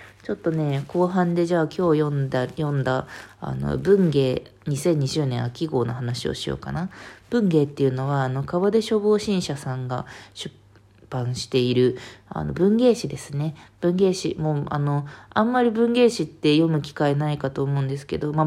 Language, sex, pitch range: Japanese, female, 140-195 Hz